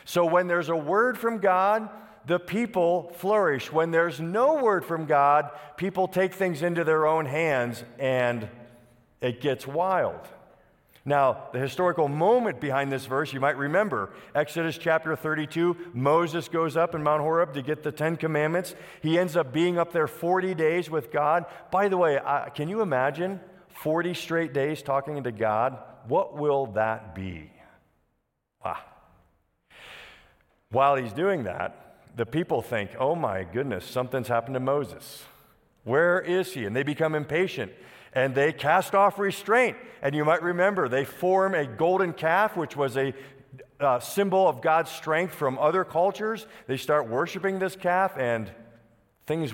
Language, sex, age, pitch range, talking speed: English, male, 50-69, 135-175 Hz, 160 wpm